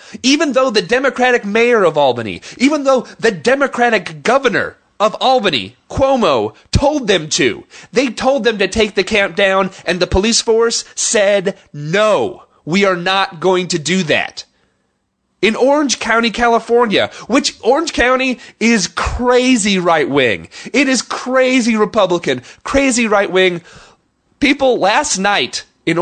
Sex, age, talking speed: male, 30-49, 135 wpm